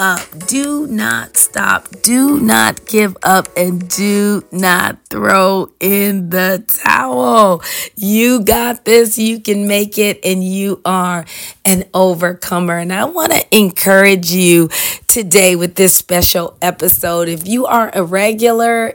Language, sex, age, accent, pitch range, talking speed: English, female, 30-49, American, 185-235 Hz, 135 wpm